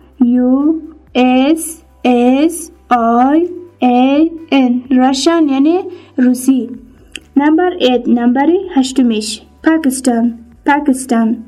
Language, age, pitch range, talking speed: English, 10-29, 245-315 Hz, 80 wpm